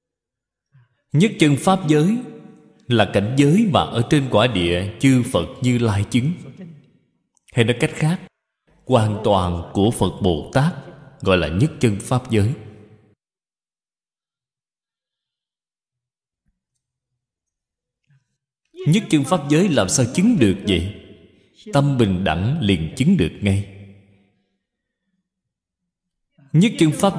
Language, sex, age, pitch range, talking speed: Vietnamese, male, 20-39, 100-150 Hz, 115 wpm